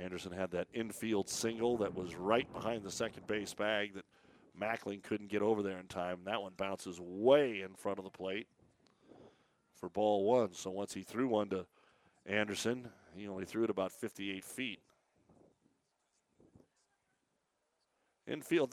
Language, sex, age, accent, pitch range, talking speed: English, male, 50-69, American, 100-120 Hz, 155 wpm